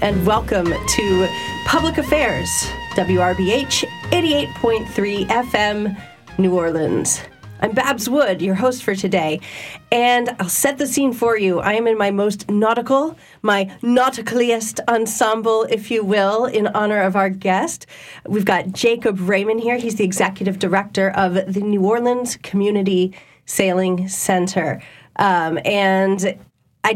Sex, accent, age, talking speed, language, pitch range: female, American, 40-59, 135 wpm, English, 190-230 Hz